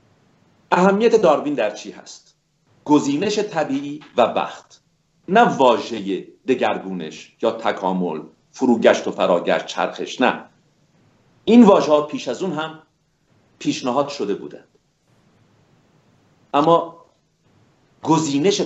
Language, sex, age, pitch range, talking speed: Persian, male, 50-69, 125-190 Hz, 100 wpm